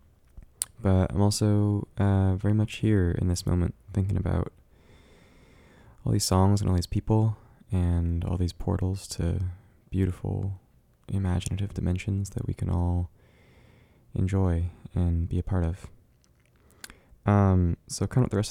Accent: American